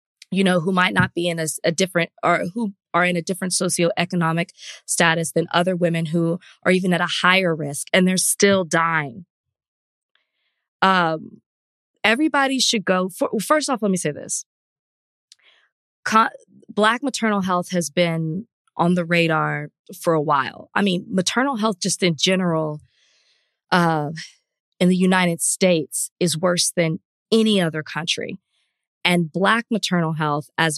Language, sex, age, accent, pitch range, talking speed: English, female, 20-39, American, 165-185 Hz, 150 wpm